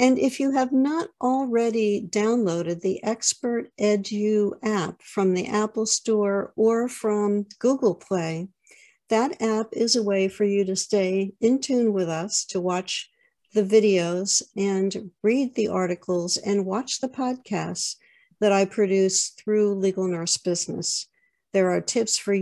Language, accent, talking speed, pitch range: English, American, 145 wpm, 185-230 Hz